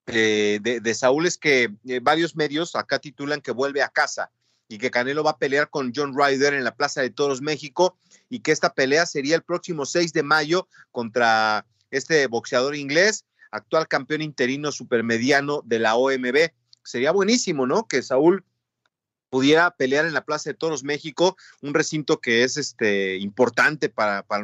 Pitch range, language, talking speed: 120-155 Hz, Spanish, 175 wpm